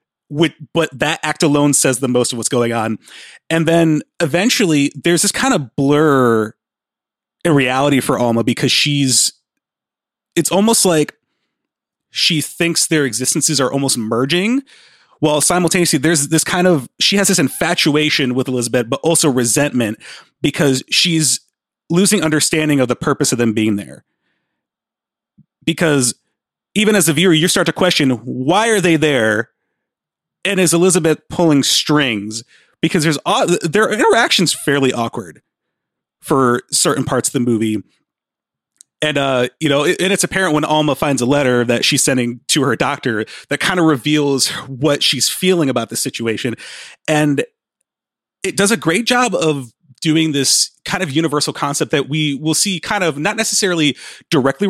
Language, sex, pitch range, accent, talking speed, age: English, male, 130-175 Hz, American, 155 wpm, 30-49